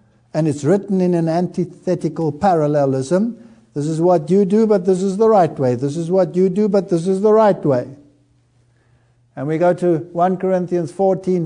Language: English